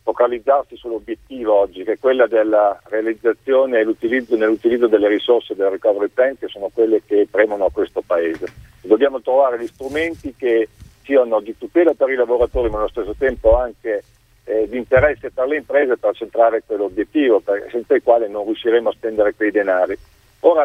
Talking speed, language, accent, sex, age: 175 wpm, Italian, native, male, 50-69